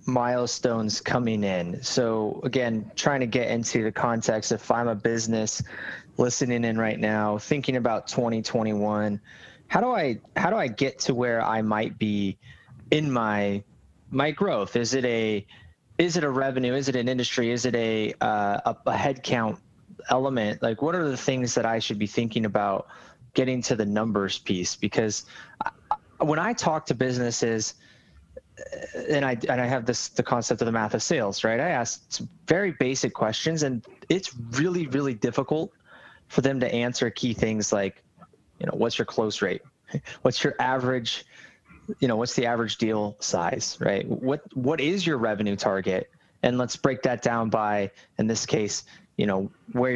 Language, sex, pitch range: English, male, 110-130 Hz